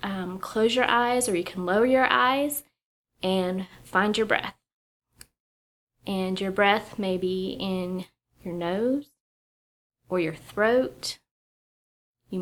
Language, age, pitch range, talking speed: English, 20-39, 180-220 Hz, 125 wpm